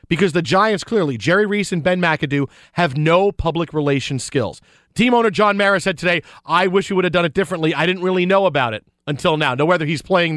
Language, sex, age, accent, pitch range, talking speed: English, male, 40-59, American, 150-205 Hz, 230 wpm